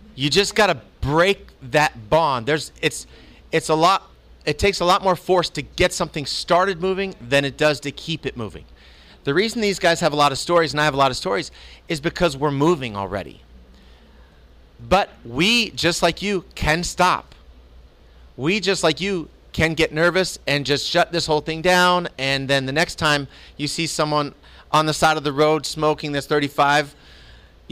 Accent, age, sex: American, 30-49, male